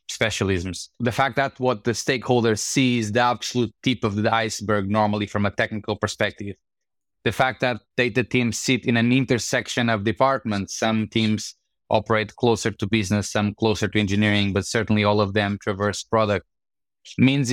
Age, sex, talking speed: 20-39, male, 170 wpm